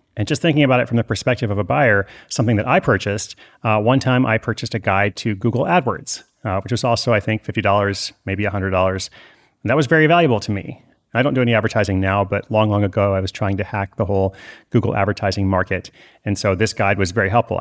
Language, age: English, 30-49